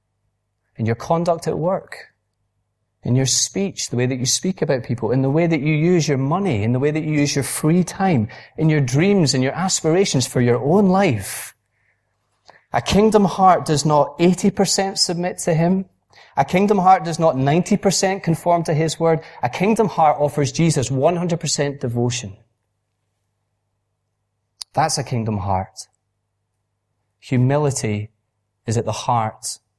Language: English